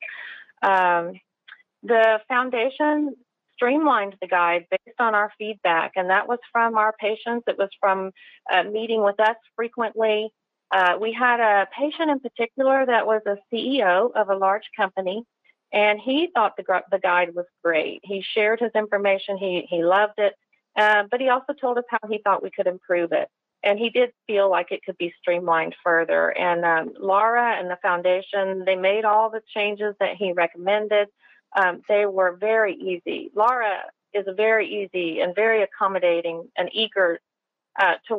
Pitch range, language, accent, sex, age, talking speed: 185-230 Hz, English, American, female, 40-59, 170 wpm